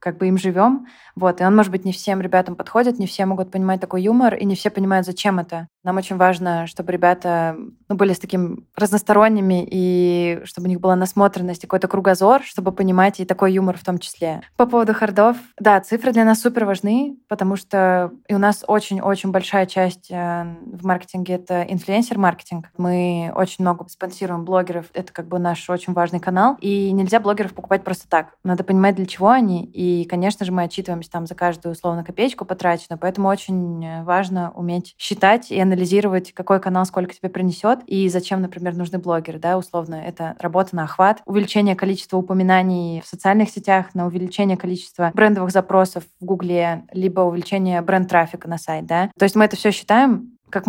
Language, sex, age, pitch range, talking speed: Russian, female, 20-39, 175-195 Hz, 185 wpm